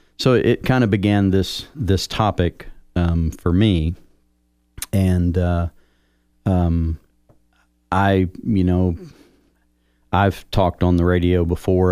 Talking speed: 115 wpm